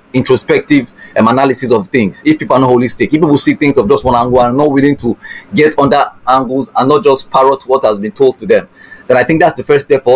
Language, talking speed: English, 260 wpm